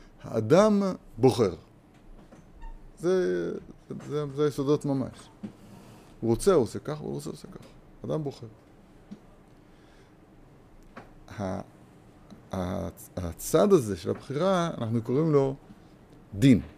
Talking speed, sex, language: 95 wpm, male, Hebrew